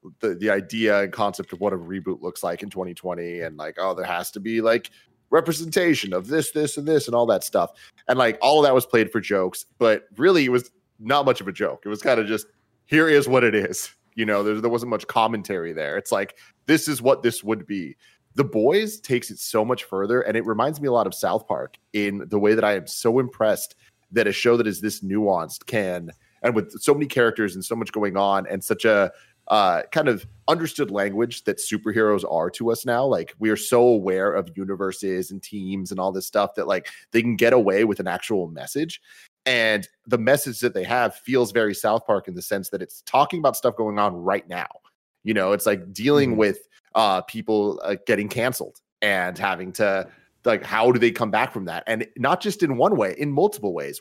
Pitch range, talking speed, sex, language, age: 100-125 Hz, 230 wpm, male, English, 30-49